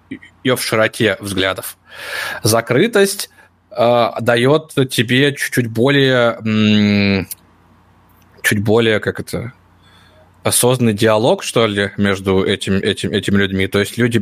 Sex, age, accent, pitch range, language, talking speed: male, 20-39, native, 100-125 Hz, Russian, 100 wpm